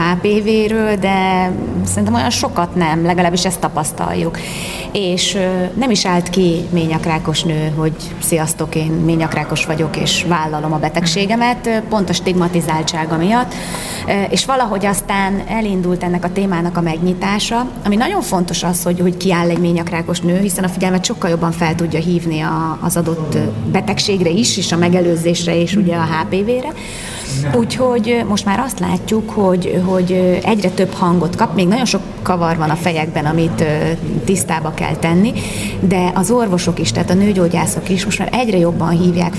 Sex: female